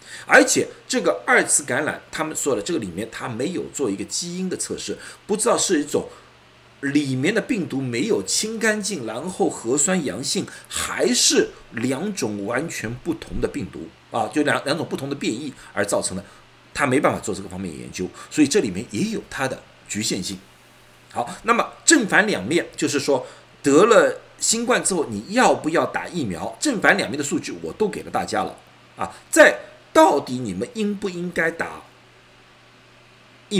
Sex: male